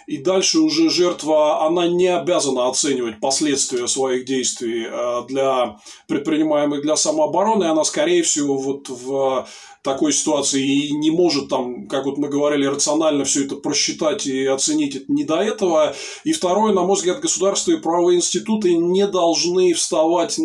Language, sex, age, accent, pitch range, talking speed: Russian, male, 20-39, native, 140-195 Hz, 155 wpm